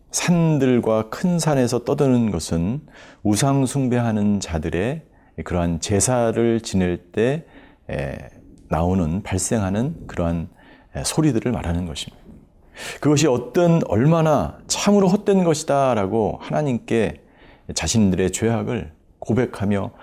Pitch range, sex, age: 95-135 Hz, male, 40-59